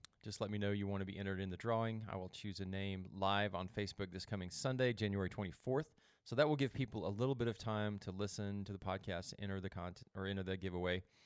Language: English